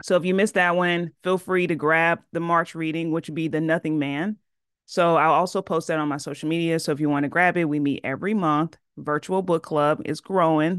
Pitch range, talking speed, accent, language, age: 150-185 Hz, 245 wpm, American, English, 30-49